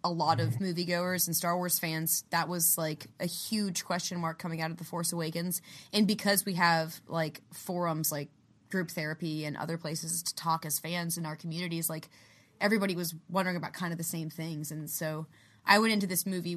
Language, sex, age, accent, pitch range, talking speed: English, female, 20-39, American, 165-200 Hz, 205 wpm